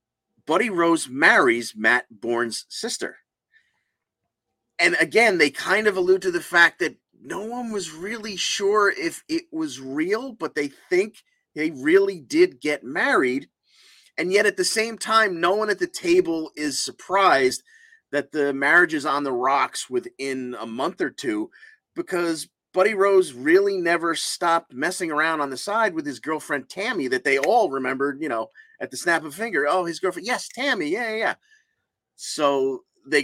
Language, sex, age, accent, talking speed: English, male, 30-49, American, 170 wpm